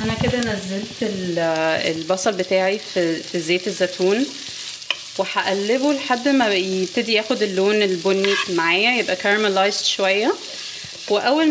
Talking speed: 105 wpm